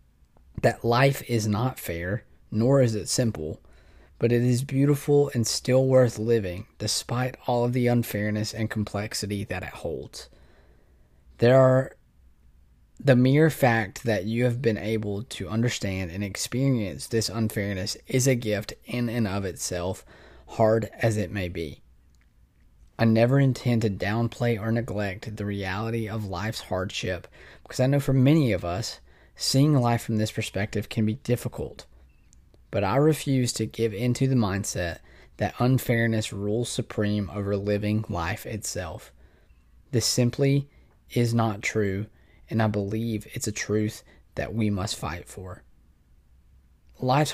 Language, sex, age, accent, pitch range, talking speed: English, male, 20-39, American, 100-120 Hz, 145 wpm